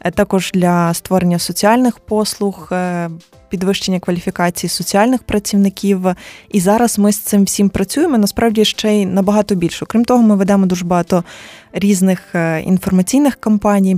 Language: Ukrainian